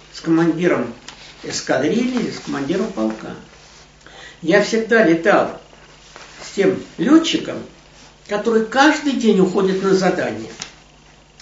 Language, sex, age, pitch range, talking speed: Russian, male, 60-79, 160-225 Hz, 95 wpm